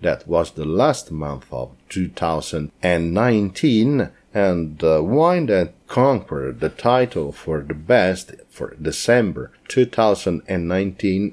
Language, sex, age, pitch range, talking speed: English, male, 50-69, 80-105 Hz, 105 wpm